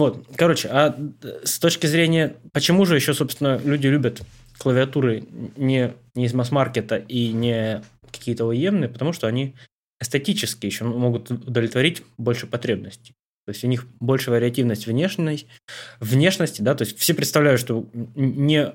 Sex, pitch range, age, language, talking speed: male, 110-135 Hz, 20-39, Russian, 145 wpm